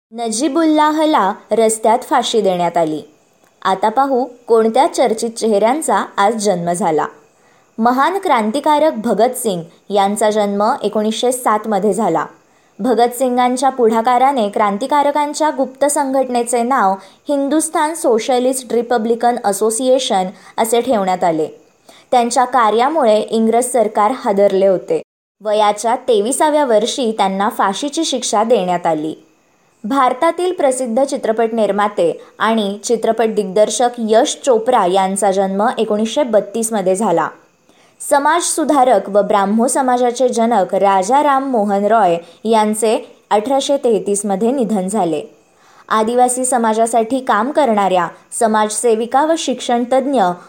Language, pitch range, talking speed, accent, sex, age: Marathi, 210-265 Hz, 100 wpm, native, male, 20-39